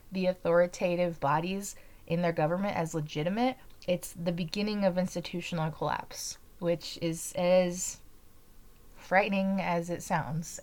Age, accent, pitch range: 20-39, American, 170-270 Hz